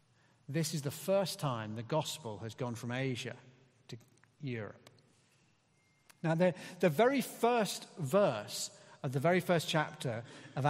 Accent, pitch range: British, 130-175 Hz